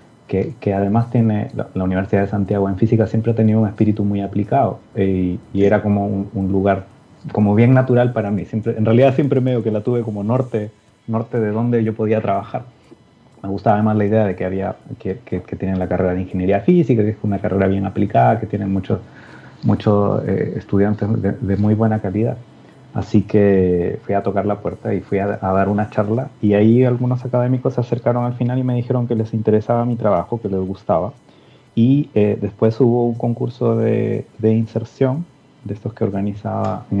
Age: 30-49